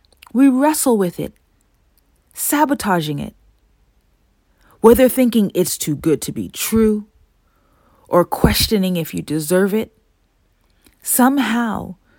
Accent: American